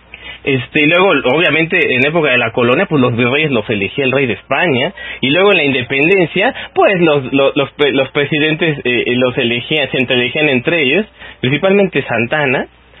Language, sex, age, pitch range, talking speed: English, male, 30-49, 130-195 Hz, 175 wpm